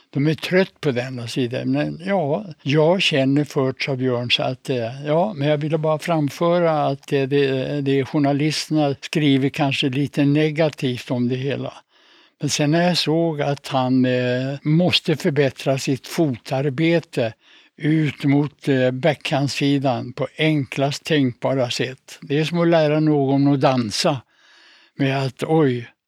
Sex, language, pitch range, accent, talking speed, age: male, Swedish, 135-155 Hz, Norwegian, 145 wpm, 60-79